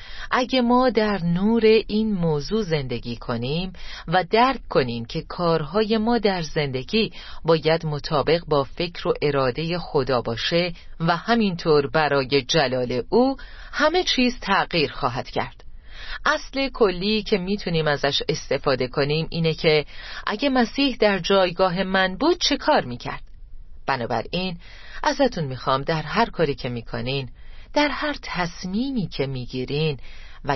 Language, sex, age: Persian, female, 40-59